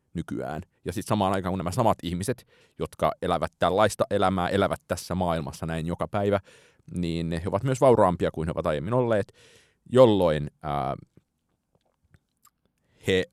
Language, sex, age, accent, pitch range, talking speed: Finnish, male, 30-49, native, 80-100 Hz, 145 wpm